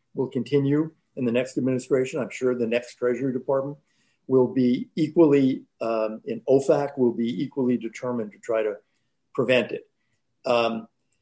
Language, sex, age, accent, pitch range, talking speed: English, male, 50-69, American, 120-165 Hz, 150 wpm